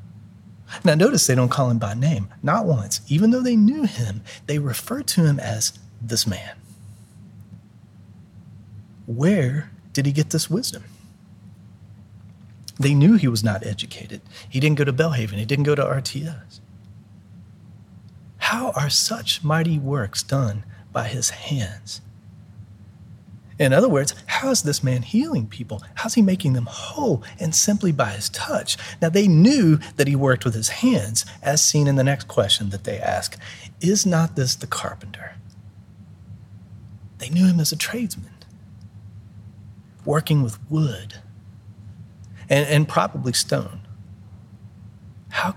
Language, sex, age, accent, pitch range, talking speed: English, male, 30-49, American, 100-145 Hz, 145 wpm